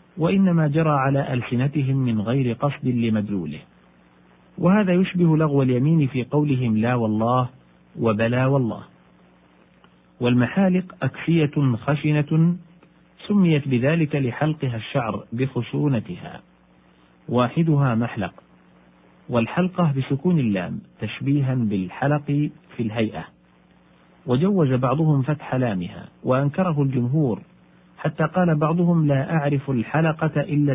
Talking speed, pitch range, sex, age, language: 95 wpm, 105-150 Hz, male, 40-59, Arabic